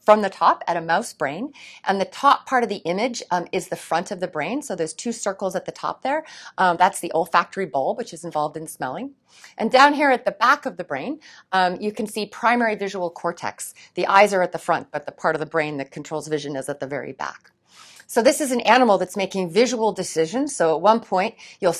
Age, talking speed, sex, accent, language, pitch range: 40-59, 245 wpm, female, American, English, 175-230 Hz